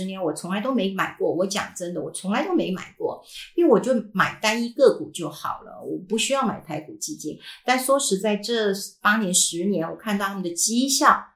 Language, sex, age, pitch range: Chinese, female, 50-69, 180-245 Hz